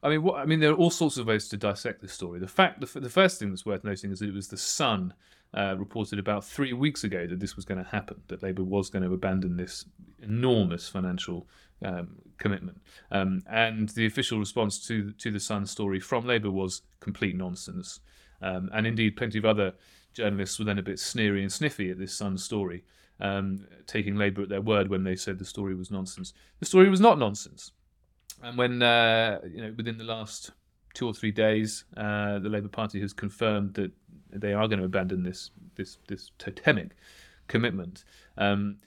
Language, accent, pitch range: English, British, 95-115 Hz